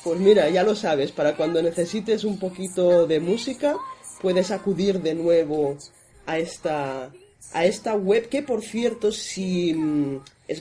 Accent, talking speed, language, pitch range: Spanish, 145 wpm, Spanish, 155-200 Hz